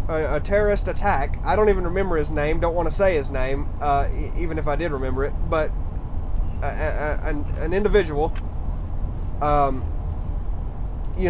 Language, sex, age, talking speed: English, male, 20-39, 160 wpm